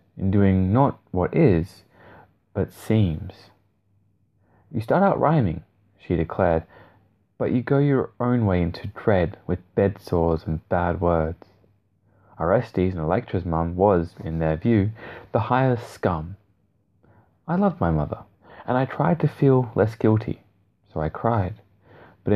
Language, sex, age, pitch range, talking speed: English, male, 20-39, 90-115 Hz, 140 wpm